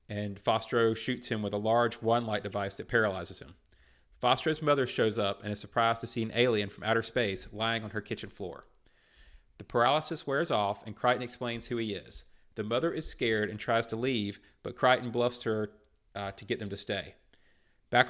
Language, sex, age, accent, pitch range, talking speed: English, male, 30-49, American, 105-125 Hz, 200 wpm